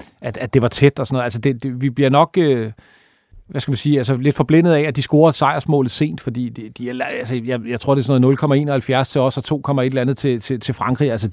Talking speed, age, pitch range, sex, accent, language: 270 wpm, 40-59, 120-145 Hz, male, native, Danish